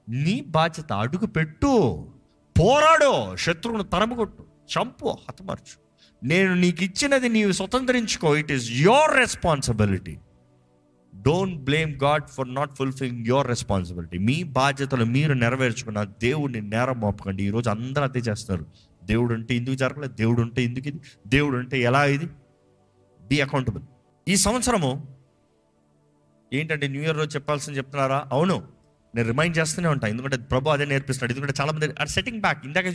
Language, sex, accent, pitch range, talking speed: Telugu, male, native, 120-185 Hz, 135 wpm